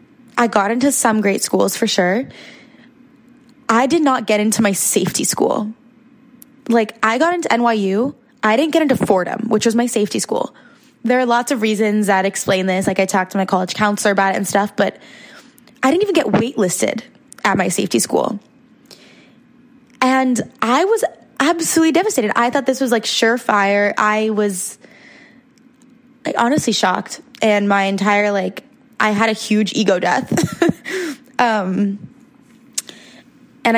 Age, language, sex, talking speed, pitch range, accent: 20-39, English, female, 155 wpm, 205-255 Hz, American